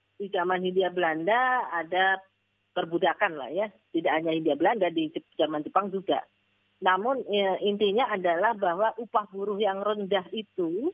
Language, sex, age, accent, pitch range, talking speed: Indonesian, female, 30-49, native, 165-210 Hz, 145 wpm